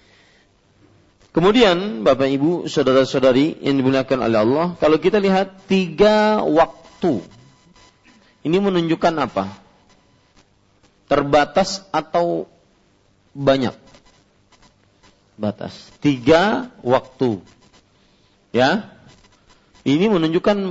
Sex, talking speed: male, 70 wpm